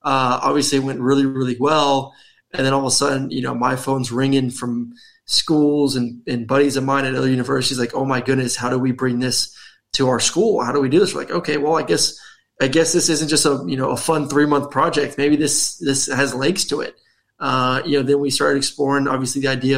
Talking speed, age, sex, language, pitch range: 245 wpm, 20-39, male, English, 130-145 Hz